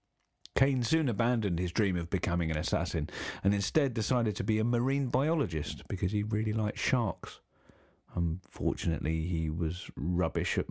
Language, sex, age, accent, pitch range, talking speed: English, male, 40-59, British, 85-110 Hz, 150 wpm